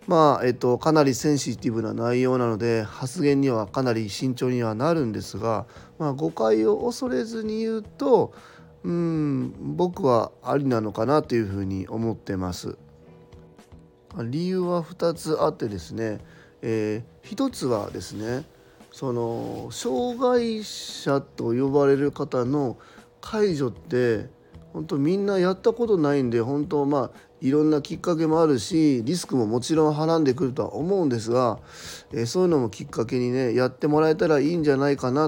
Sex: male